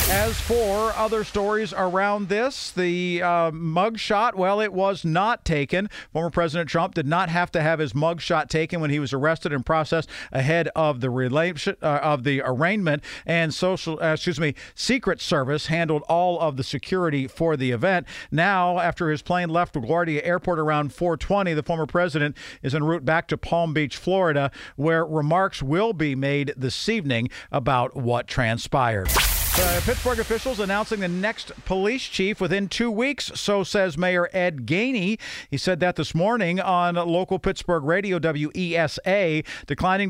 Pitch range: 155-185 Hz